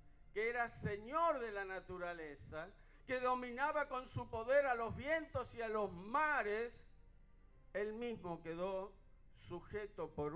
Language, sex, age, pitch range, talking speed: Spanish, male, 50-69, 160-265 Hz, 135 wpm